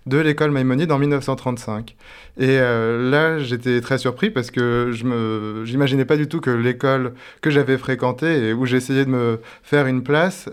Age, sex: 20-39, male